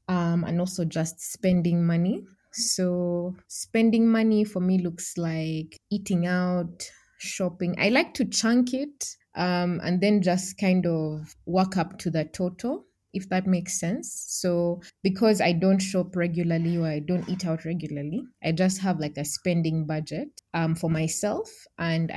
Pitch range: 165-190 Hz